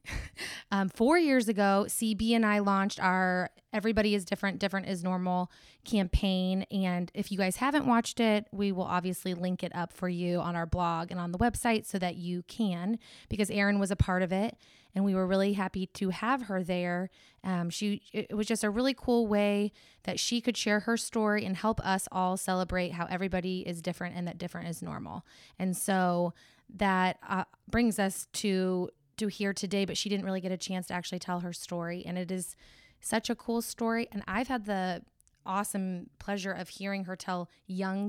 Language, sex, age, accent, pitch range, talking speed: English, female, 20-39, American, 180-210 Hz, 200 wpm